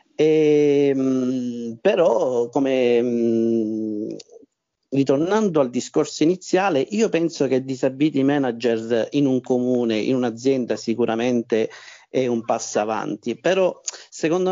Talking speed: 90 wpm